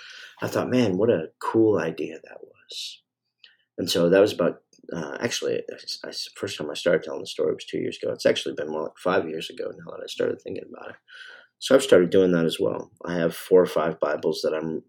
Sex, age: male, 40-59